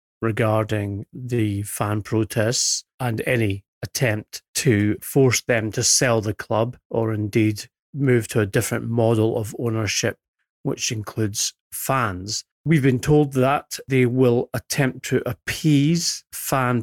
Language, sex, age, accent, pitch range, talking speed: English, male, 40-59, British, 110-135 Hz, 130 wpm